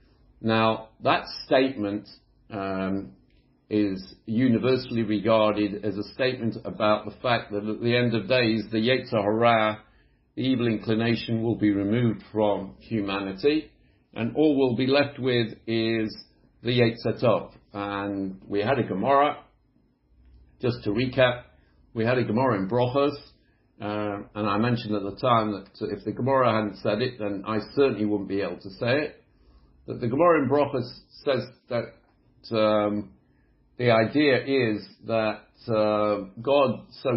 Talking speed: 150 wpm